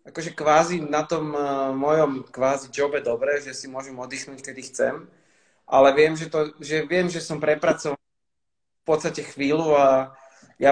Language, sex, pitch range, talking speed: Slovak, male, 125-150 Hz, 170 wpm